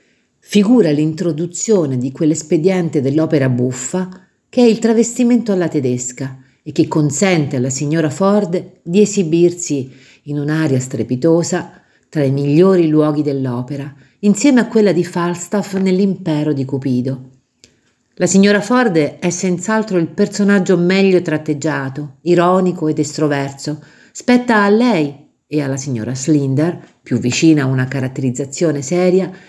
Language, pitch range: Italian, 145-185 Hz